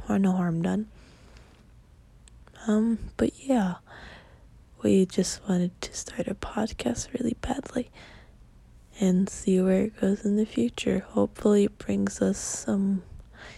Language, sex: English, female